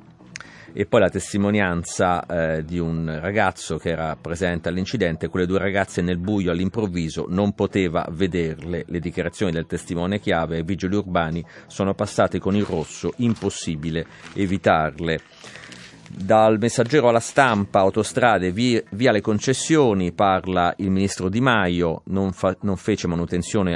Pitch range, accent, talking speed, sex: 85-105 Hz, native, 140 wpm, male